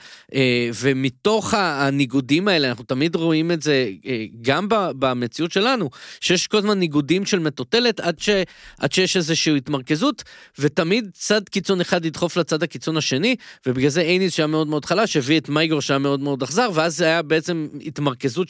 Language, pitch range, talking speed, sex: Hebrew, 130-185 Hz, 160 wpm, male